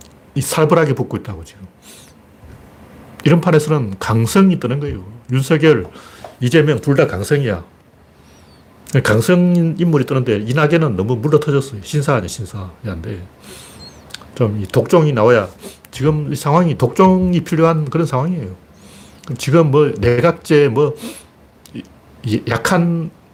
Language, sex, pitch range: Korean, male, 125-190 Hz